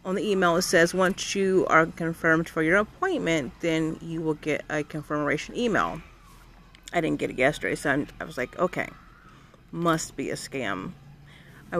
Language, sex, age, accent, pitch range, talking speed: English, female, 30-49, American, 155-230 Hz, 175 wpm